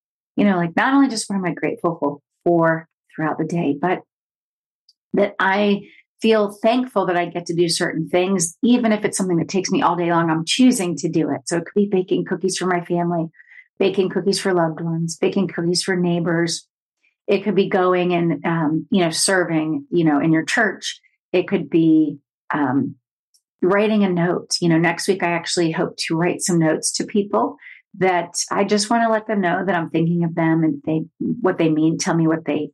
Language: English